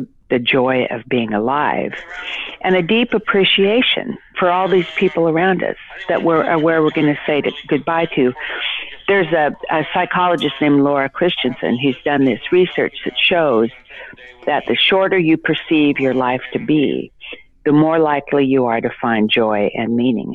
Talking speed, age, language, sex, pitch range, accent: 165 wpm, 50-69, English, female, 125-170 Hz, American